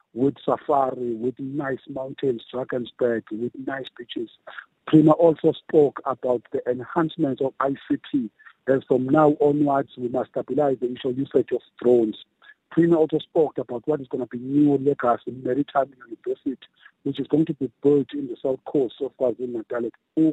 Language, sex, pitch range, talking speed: English, male, 125-155 Hz, 175 wpm